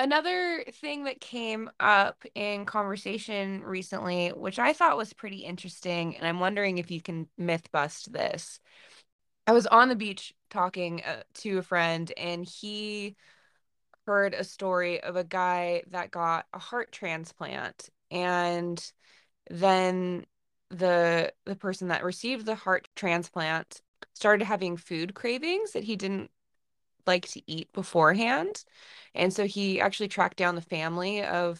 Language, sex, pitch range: English, female, 170-200 Hz